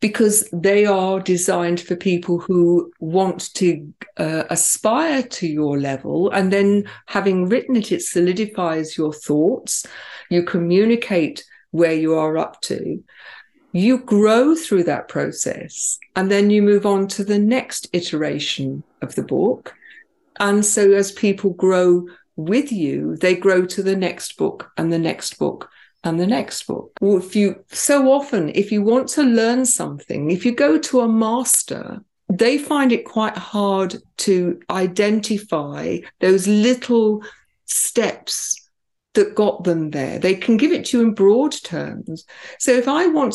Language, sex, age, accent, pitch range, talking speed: English, female, 50-69, British, 180-235 Hz, 155 wpm